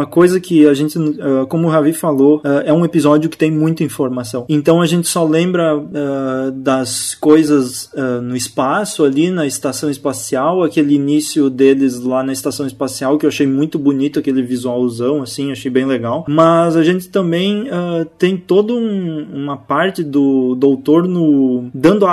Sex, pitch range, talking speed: male, 135-165 Hz, 160 wpm